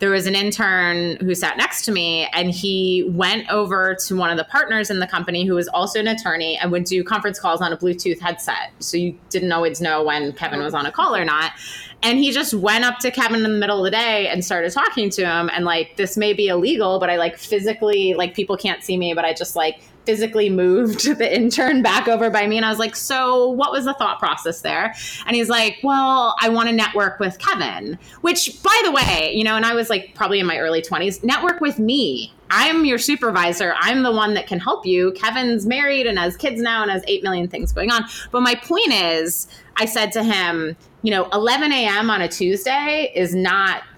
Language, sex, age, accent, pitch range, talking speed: English, female, 20-39, American, 180-230 Hz, 235 wpm